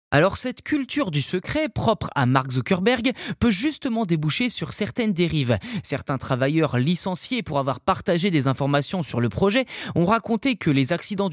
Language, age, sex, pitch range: French, 20-39, male, 145-205 Hz